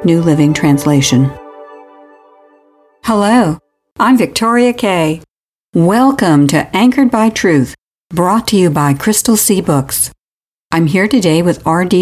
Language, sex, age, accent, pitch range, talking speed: English, female, 60-79, American, 150-215 Hz, 120 wpm